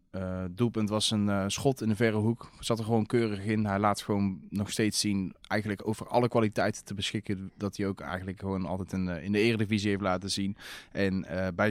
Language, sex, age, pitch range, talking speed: English, male, 20-39, 95-110 Hz, 225 wpm